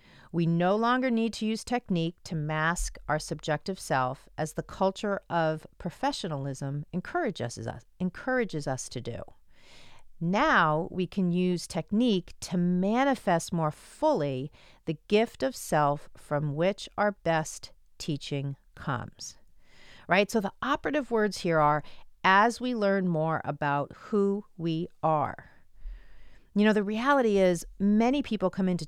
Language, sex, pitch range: English, female, 150-205 Hz